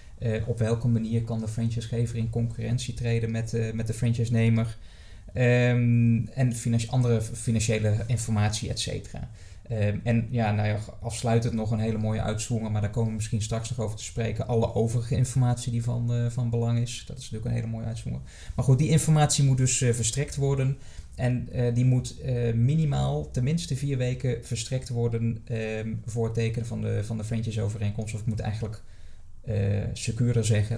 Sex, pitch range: male, 110-120 Hz